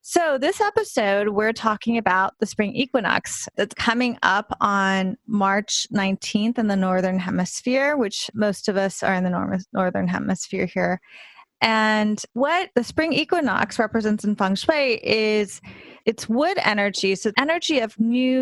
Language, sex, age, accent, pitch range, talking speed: English, female, 30-49, American, 200-250 Hz, 150 wpm